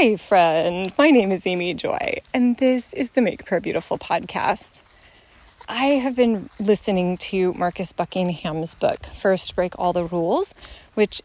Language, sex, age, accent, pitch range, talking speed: English, female, 30-49, American, 175-225 Hz, 155 wpm